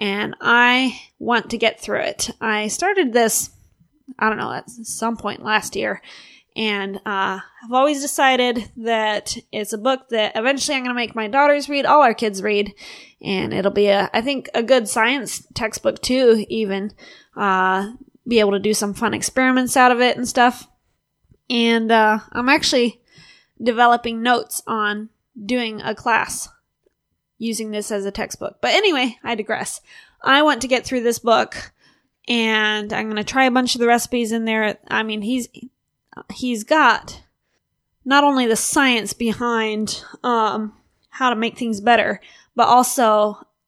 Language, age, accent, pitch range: English, 20-39, American, 215-250 Hz